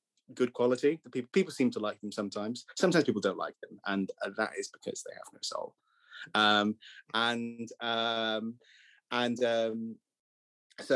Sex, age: male, 20-39